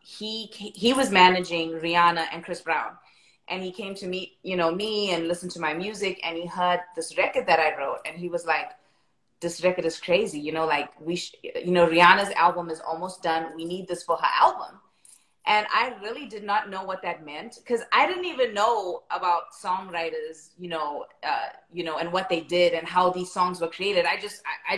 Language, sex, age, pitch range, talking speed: English, female, 30-49, 175-215 Hz, 215 wpm